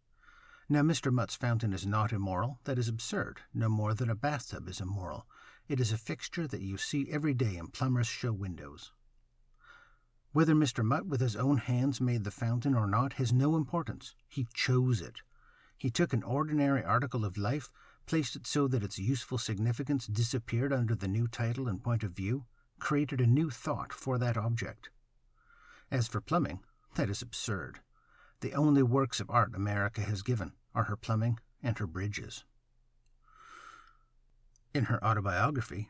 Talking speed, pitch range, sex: 170 wpm, 105-130 Hz, male